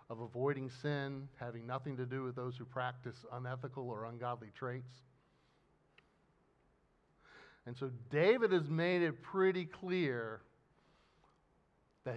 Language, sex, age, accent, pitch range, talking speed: English, male, 50-69, American, 125-170 Hz, 120 wpm